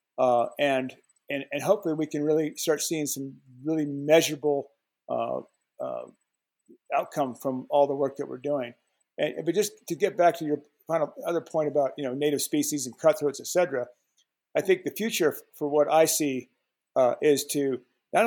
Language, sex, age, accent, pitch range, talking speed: English, male, 50-69, American, 140-165 Hz, 185 wpm